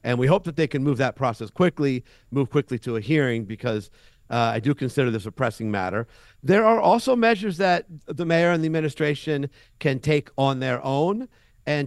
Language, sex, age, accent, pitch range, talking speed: English, male, 50-69, American, 120-150 Hz, 200 wpm